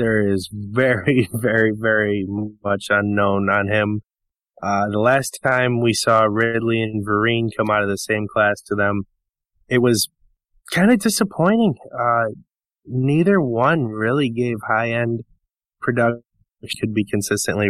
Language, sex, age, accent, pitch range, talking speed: English, male, 20-39, American, 105-125 Hz, 140 wpm